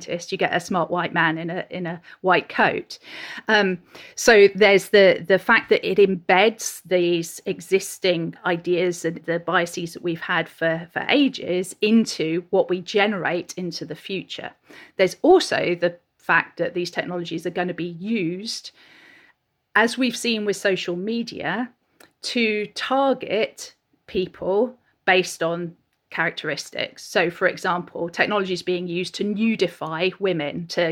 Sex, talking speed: female, 145 wpm